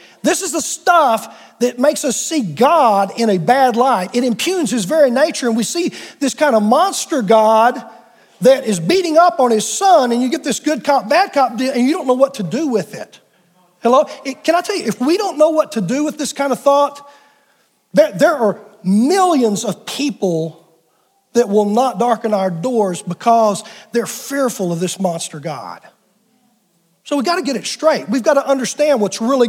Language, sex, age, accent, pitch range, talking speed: English, male, 40-59, American, 200-285 Hz, 205 wpm